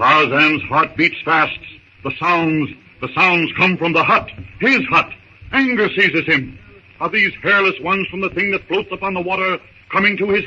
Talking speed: 185 wpm